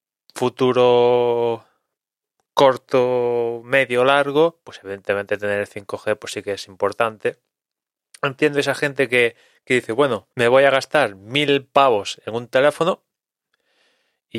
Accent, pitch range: Spanish, 105-125 Hz